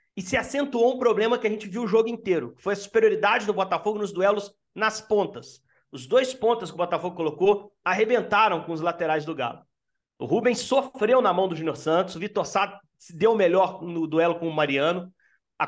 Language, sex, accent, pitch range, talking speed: Portuguese, male, Brazilian, 175-225 Hz, 210 wpm